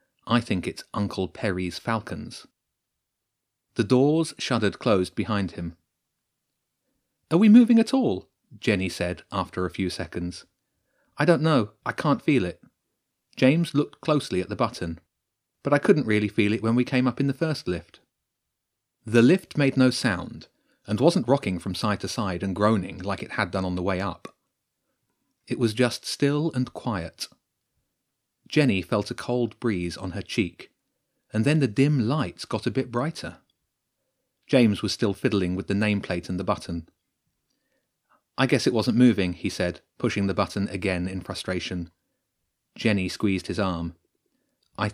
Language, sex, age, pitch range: English, male, 30-49, 95-130 Hz